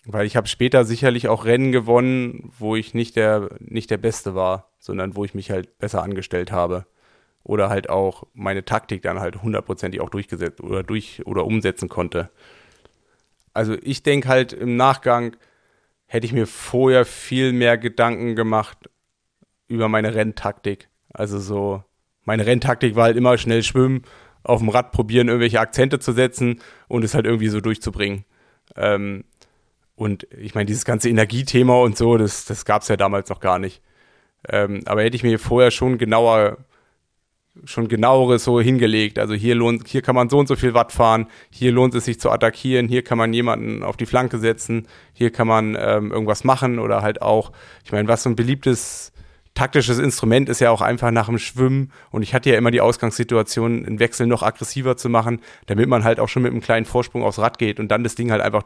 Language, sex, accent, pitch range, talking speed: German, male, German, 105-125 Hz, 195 wpm